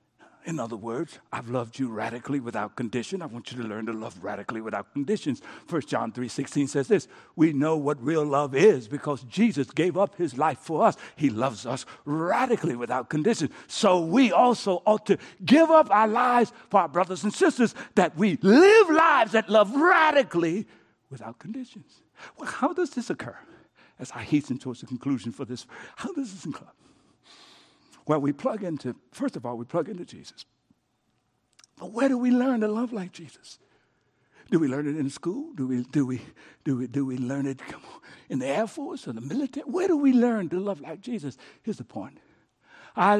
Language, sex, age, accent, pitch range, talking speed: English, male, 60-79, American, 145-230 Hz, 195 wpm